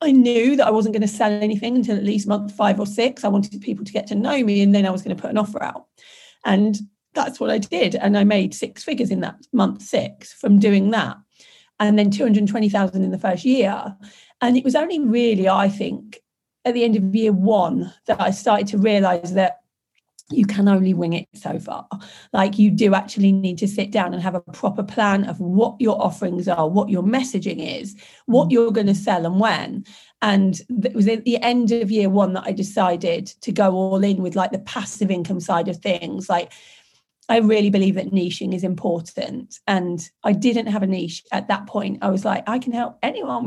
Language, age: English, 40-59